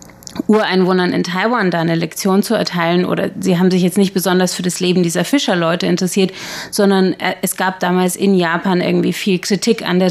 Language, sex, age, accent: German, female, 30-49, German